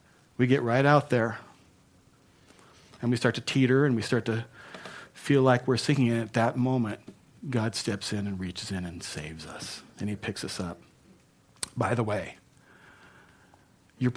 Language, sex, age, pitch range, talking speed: English, male, 40-59, 115-140 Hz, 170 wpm